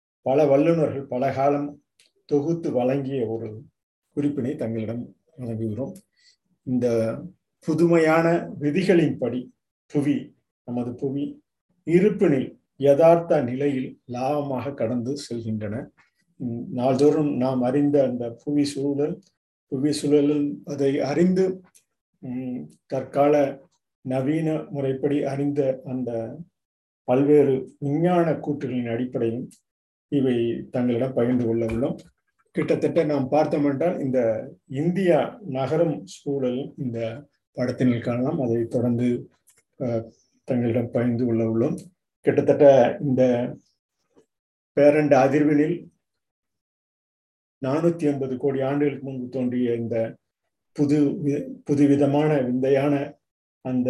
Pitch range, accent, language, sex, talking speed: 125-150 Hz, native, Tamil, male, 90 wpm